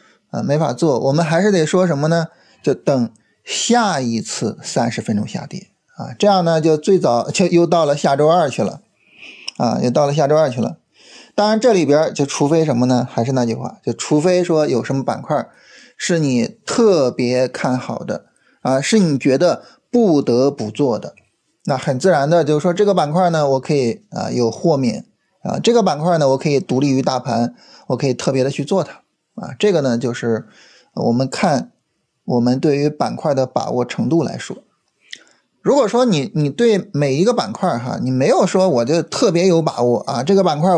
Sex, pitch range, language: male, 135-185 Hz, Chinese